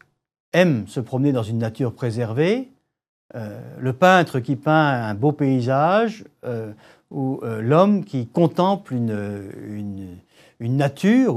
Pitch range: 120-190 Hz